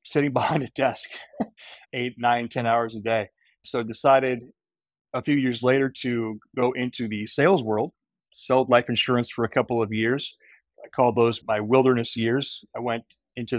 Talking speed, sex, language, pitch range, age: 170 wpm, male, English, 110-130 Hz, 30-49